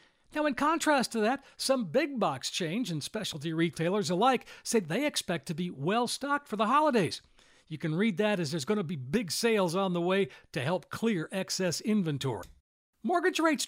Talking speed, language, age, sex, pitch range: 185 wpm, English, 60-79, male, 170-240 Hz